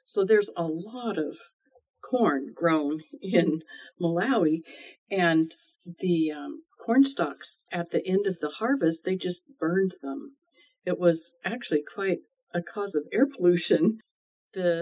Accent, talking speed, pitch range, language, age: American, 140 wpm, 165-200 Hz, English, 50-69